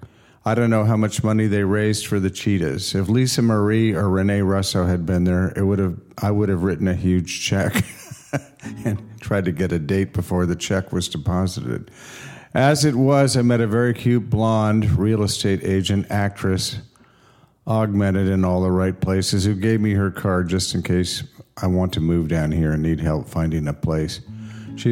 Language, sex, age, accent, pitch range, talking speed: English, male, 50-69, American, 90-110 Hz, 195 wpm